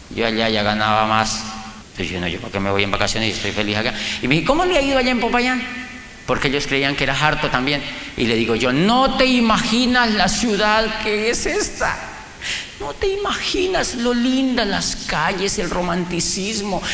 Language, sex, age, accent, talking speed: Spanish, male, 40-59, Spanish, 200 wpm